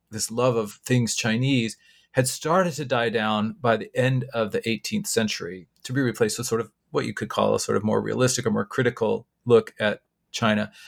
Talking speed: 210 wpm